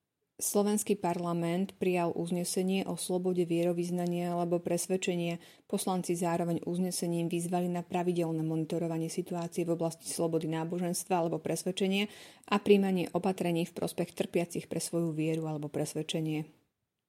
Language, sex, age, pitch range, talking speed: Slovak, female, 30-49, 165-185 Hz, 120 wpm